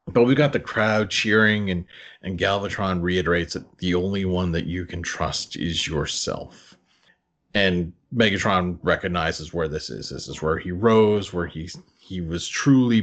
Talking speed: 165 wpm